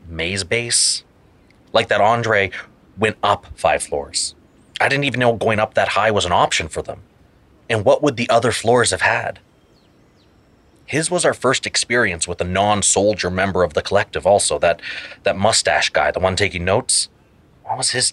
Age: 30-49